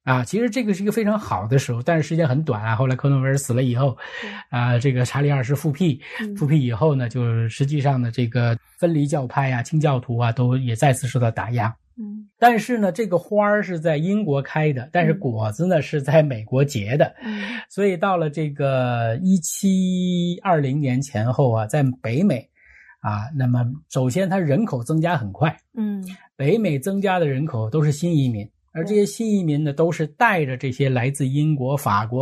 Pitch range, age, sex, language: 125-185 Hz, 20-39, male, Chinese